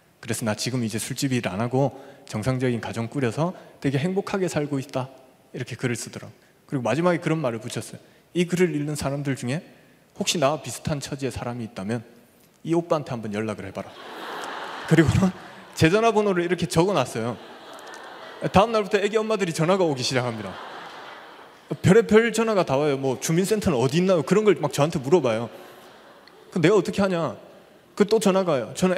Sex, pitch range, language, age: male, 130-180 Hz, Korean, 20-39